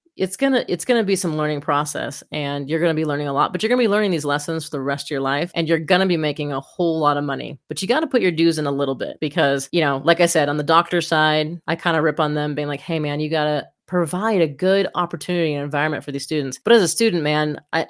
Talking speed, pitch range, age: 305 wpm, 150-180 Hz, 30-49